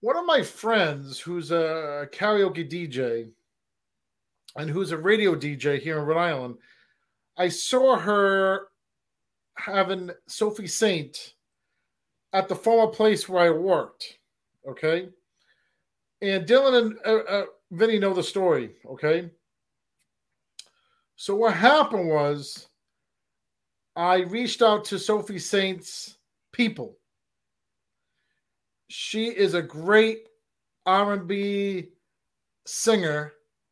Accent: American